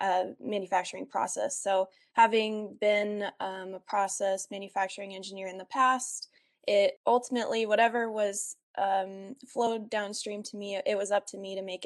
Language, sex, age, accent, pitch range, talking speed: English, female, 20-39, American, 190-210 Hz, 150 wpm